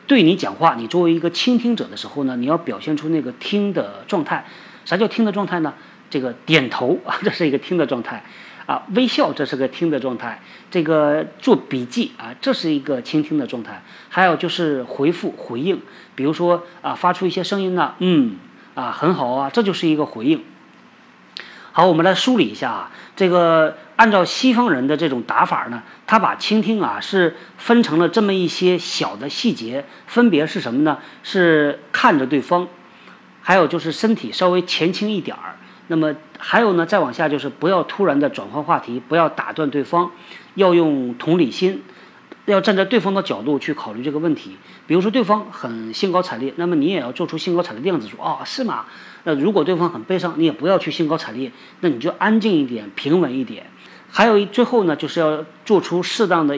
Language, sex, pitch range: Chinese, male, 155-205 Hz